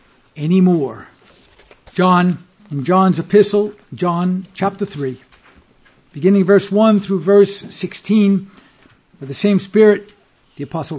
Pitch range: 185-240 Hz